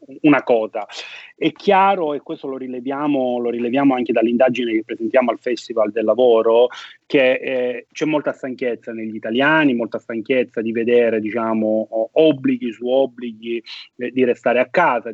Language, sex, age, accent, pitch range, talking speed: Italian, male, 30-49, native, 120-150 Hz, 150 wpm